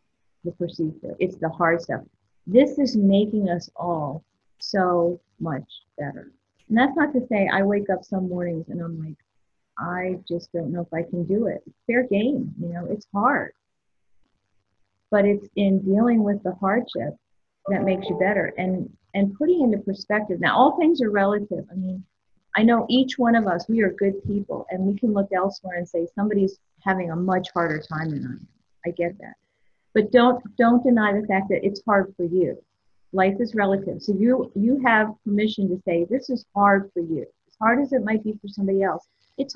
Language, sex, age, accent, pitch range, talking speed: English, female, 40-59, American, 170-215 Hz, 195 wpm